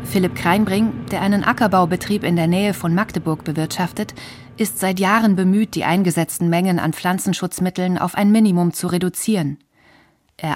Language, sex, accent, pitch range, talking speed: German, female, German, 165-205 Hz, 150 wpm